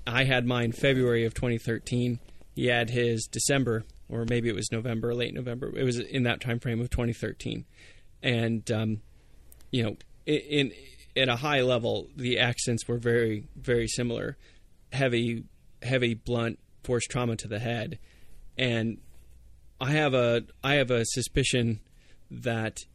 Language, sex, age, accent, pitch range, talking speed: English, male, 20-39, American, 110-125 Hz, 155 wpm